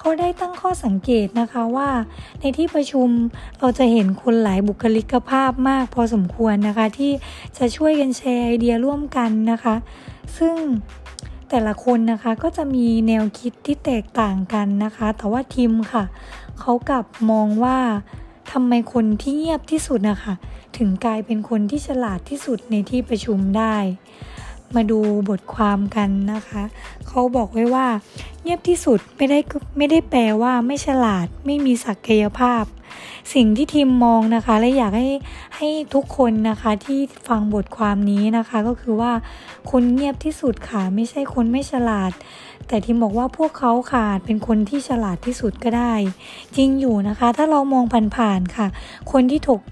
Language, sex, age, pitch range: Thai, female, 20-39, 215-265 Hz